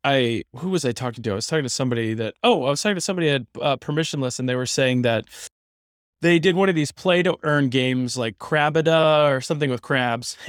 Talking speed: 235 wpm